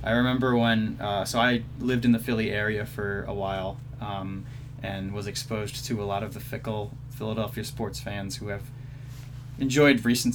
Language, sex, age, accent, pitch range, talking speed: English, male, 20-39, American, 105-130 Hz, 180 wpm